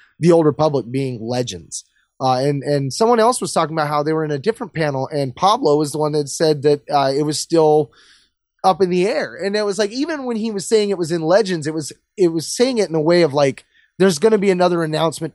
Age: 20-39